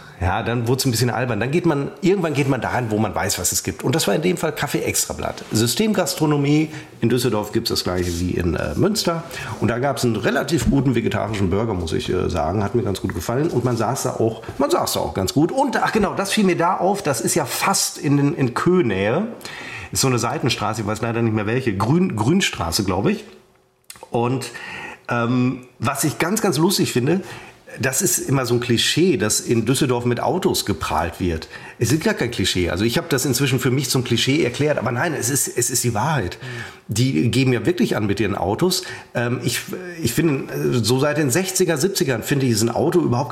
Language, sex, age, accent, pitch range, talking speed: German, male, 40-59, German, 115-155 Hz, 225 wpm